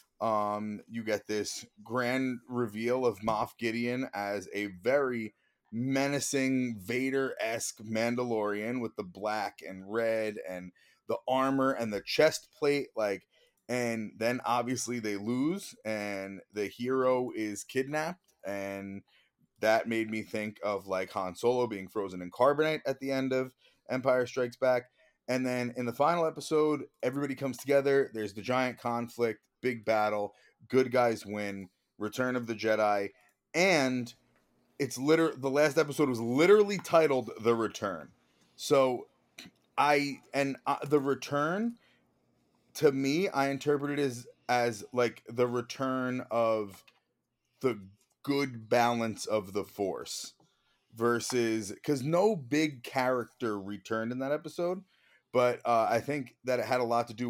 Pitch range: 110-135 Hz